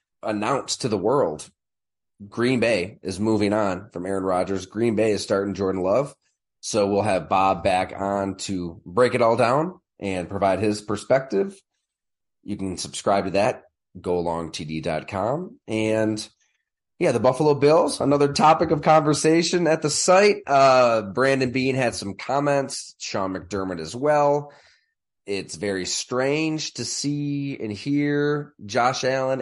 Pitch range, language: 95-130 Hz, English